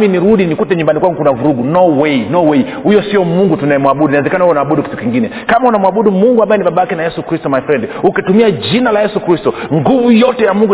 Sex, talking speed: male, 220 wpm